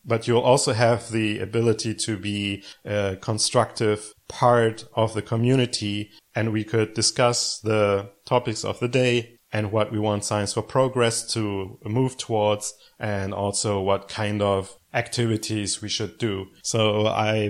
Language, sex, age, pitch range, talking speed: English, male, 30-49, 105-120 Hz, 150 wpm